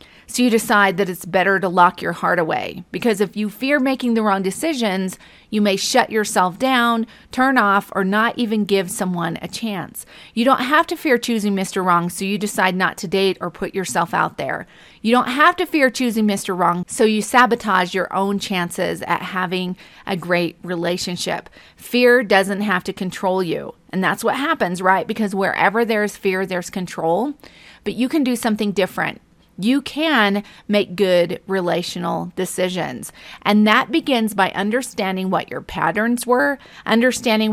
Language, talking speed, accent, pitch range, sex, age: English, 175 wpm, American, 185-230 Hz, female, 40-59